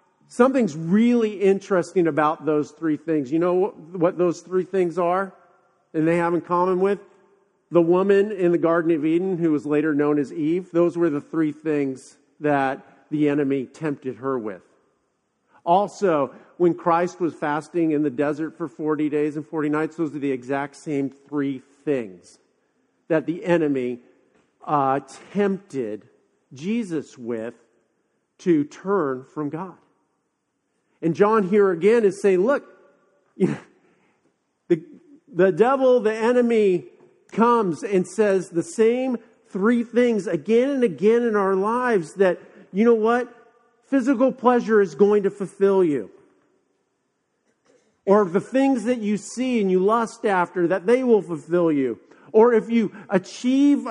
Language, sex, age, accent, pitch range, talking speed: English, male, 50-69, American, 155-220 Hz, 145 wpm